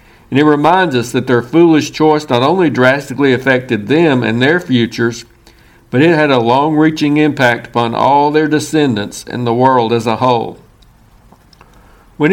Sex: male